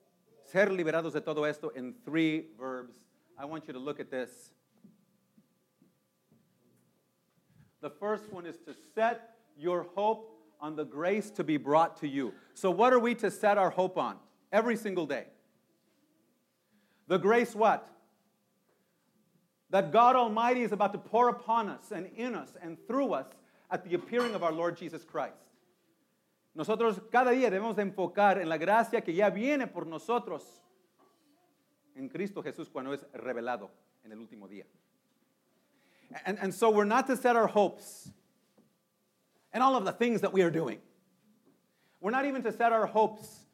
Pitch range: 165-230 Hz